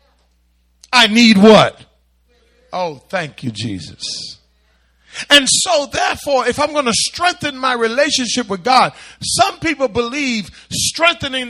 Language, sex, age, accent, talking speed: English, male, 50-69, American, 120 wpm